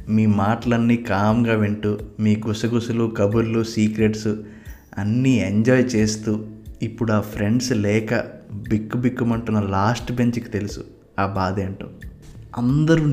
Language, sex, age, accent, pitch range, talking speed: Telugu, male, 20-39, native, 105-120 Hz, 105 wpm